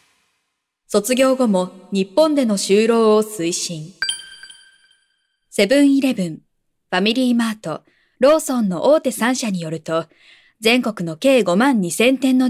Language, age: Japanese, 20-39